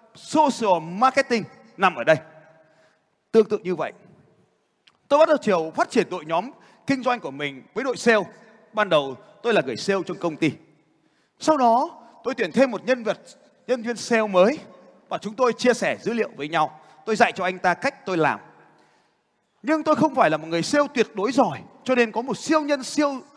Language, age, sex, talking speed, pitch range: Vietnamese, 20-39, male, 205 wpm, 175-245 Hz